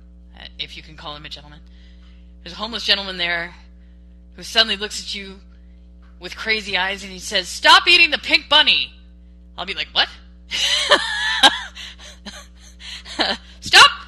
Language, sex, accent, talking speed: English, female, American, 140 wpm